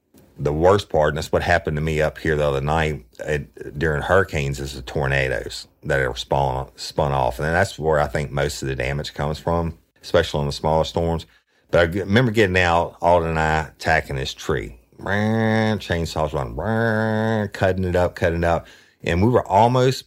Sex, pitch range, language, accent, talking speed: male, 75-95 Hz, English, American, 190 wpm